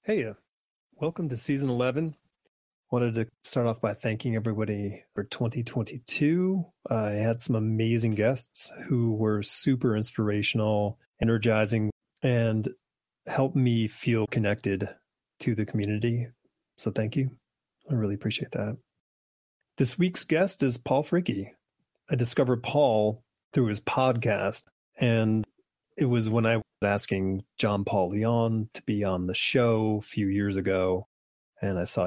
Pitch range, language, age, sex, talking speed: 100-130 Hz, English, 30-49, male, 140 wpm